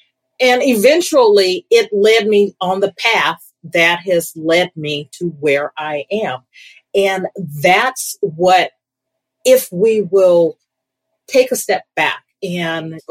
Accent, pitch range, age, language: American, 150-215 Hz, 40-59, English